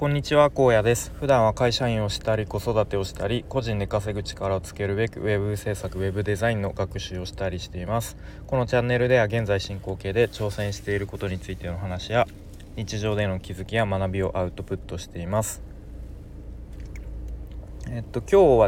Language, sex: Japanese, male